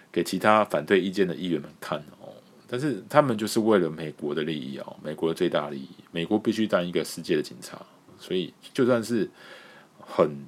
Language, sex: Chinese, male